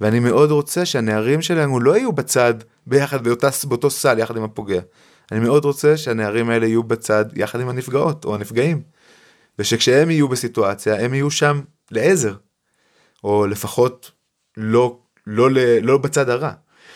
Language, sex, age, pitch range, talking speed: Hebrew, male, 20-39, 115-160 Hz, 150 wpm